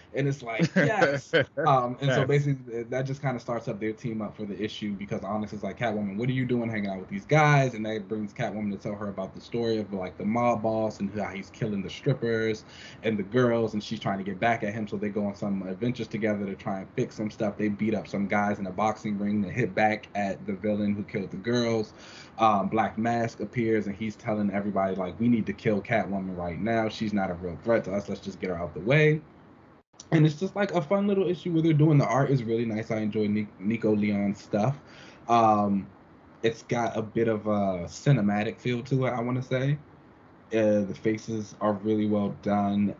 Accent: American